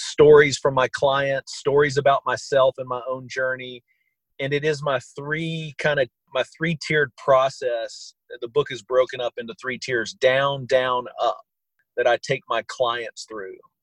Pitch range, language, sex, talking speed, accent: 125-155 Hz, English, male, 165 wpm, American